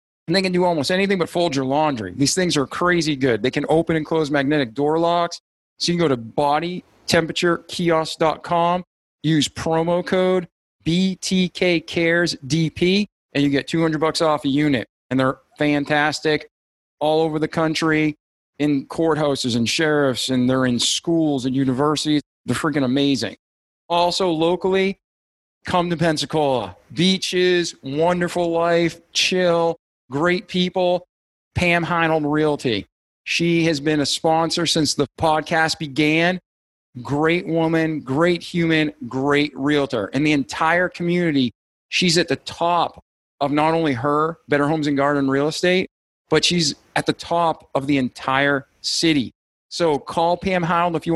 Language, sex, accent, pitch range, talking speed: English, male, American, 145-175 Hz, 145 wpm